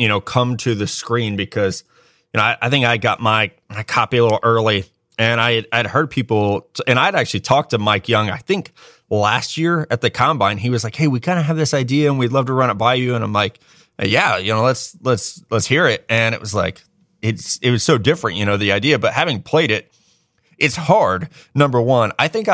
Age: 20-39